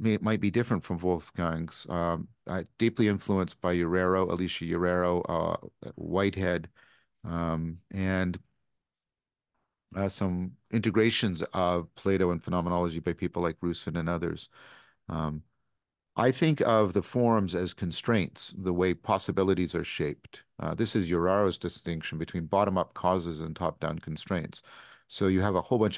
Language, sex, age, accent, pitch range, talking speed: English, male, 50-69, American, 85-100 Hz, 140 wpm